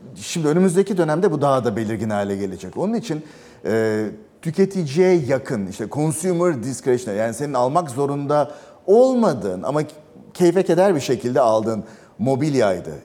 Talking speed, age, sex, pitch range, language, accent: 135 wpm, 40-59, male, 120-150 Hz, Turkish, native